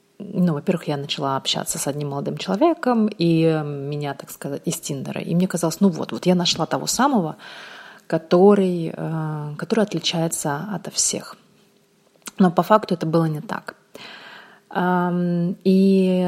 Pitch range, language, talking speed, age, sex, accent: 160-195 Hz, Russian, 140 wpm, 30-49, female, native